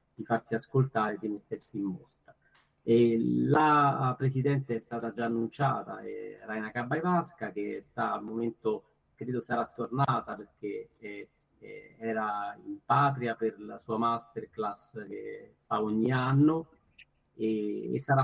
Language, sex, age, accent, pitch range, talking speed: Italian, male, 50-69, native, 110-135 Hz, 130 wpm